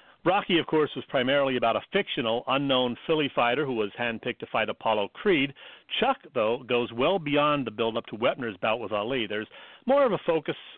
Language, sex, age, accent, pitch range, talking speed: English, male, 40-59, American, 120-150 Hz, 195 wpm